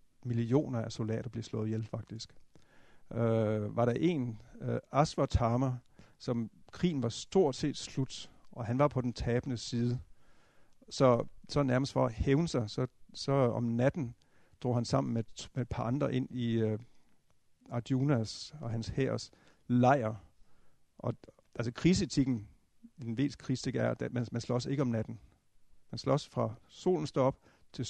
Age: 60-79